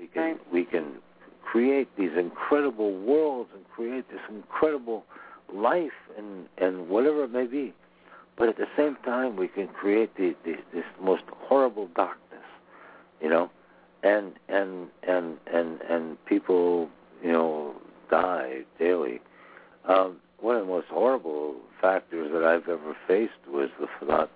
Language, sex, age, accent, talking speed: English, male, 60-79, American, 150 wpm